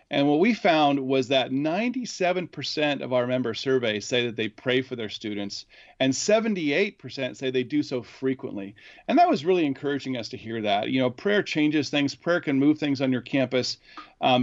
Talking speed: 195 wpm